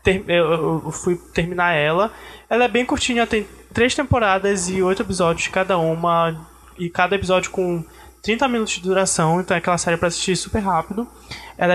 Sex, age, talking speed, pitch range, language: male, 20-39, 170 wpm, 180-220 Hz, Portuguese